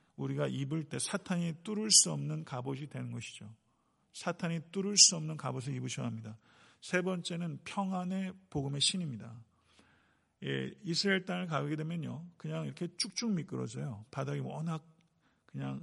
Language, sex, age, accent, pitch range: Korean, male, 40-59, native, 120-170 Hz